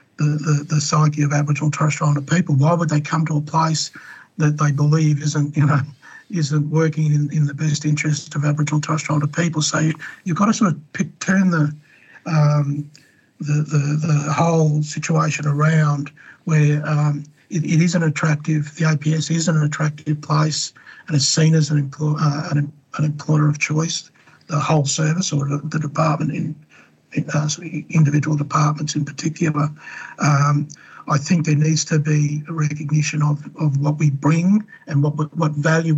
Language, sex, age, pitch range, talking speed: English, male, 60-79, 150-160 Hz, 185 wpm